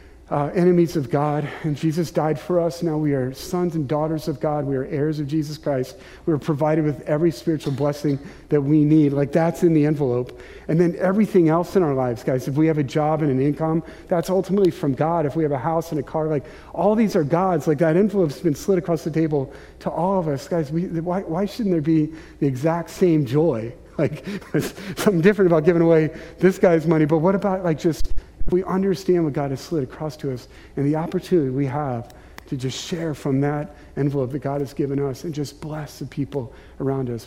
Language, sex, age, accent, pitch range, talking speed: English, male, 40-59, American, 140-170 Hz, 225 wpm